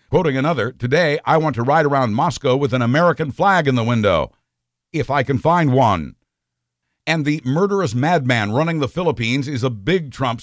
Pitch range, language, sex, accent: 125-160 Hz, English, male, American